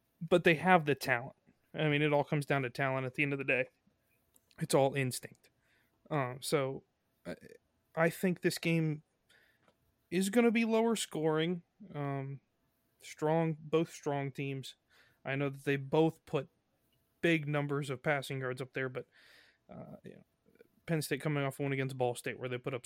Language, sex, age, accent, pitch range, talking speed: English, male, 20-39, American, 130-155 Hz, 175 wpm